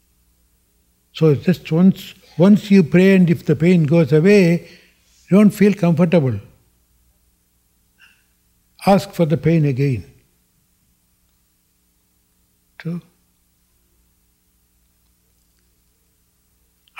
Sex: male